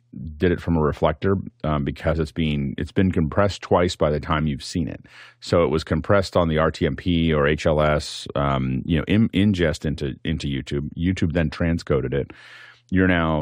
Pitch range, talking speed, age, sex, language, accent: 75-85 Hz, 185 wpm, 30-49, male, English, American